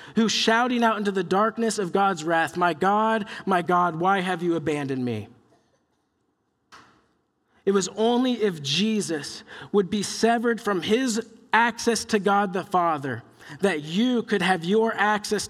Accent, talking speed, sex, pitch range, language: American, 150 wpm, male, 185-230 Hz, English